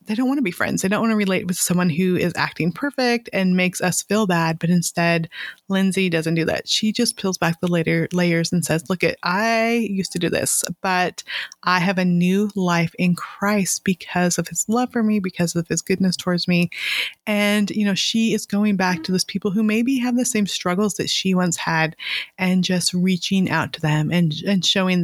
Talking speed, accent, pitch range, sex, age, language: 225 wpm, American, 170-205 Hz, female, 20-39, English